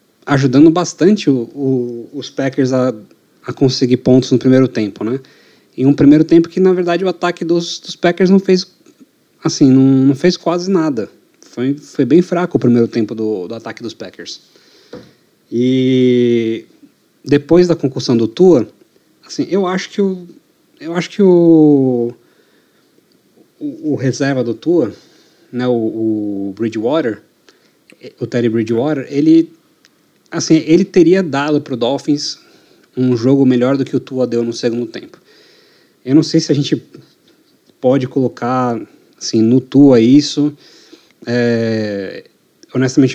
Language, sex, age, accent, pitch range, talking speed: Portuguese, male, 20-39, Brazilian, 120-155 Hz, 145 wpm